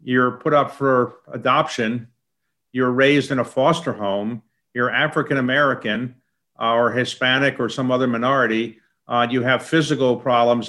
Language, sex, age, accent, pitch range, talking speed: English, male, 50-69, American, 125-150 Hz, 135 wpm